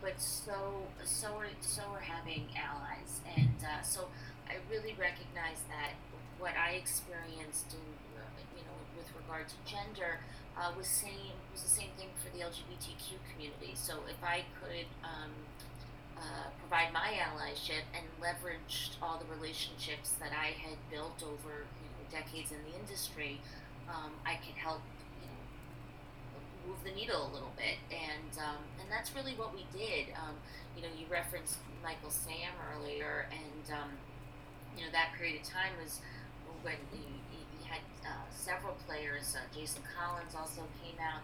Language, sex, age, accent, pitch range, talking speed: English, female, 30-49, American, 140-165 Hz, 160 wpm